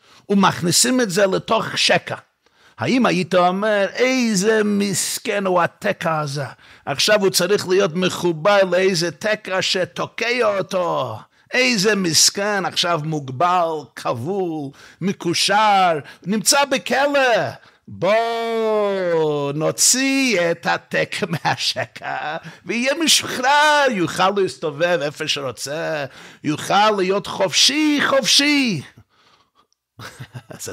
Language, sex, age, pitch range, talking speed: Hebrew, male, 50-69, 165-220 Hz, 90 wpm